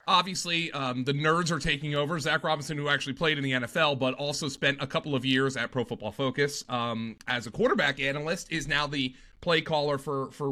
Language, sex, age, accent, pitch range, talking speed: English, male, 30-49, American, 130-165 Hz, 215 wpm